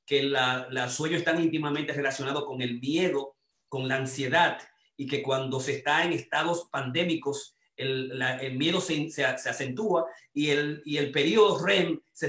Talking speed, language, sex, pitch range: 180 wpm, Spanish, male, 140-170 Hz